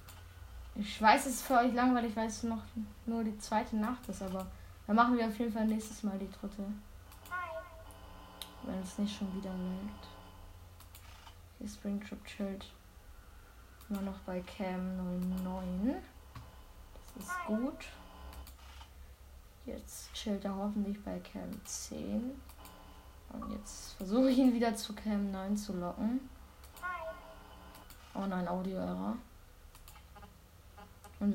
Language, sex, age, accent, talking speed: German, female, 20-39, German, 125 wpm